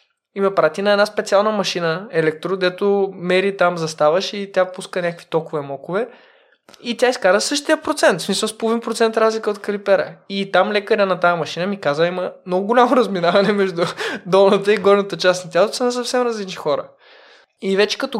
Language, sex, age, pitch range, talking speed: Bulgarian, male, 20-39, 175-220 Hz, 190 wpm